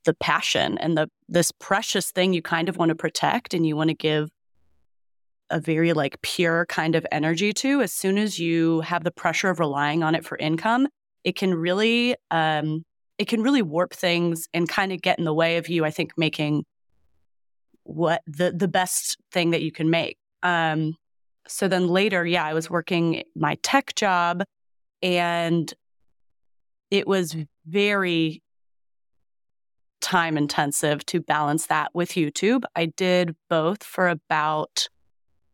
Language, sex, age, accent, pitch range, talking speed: English, female, 30-49, American, 160-195 Hz, 160 wpm